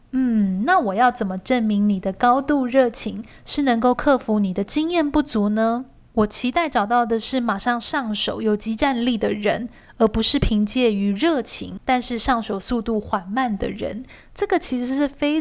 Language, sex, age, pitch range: Chinese, female, 20-39, 210-250 Hz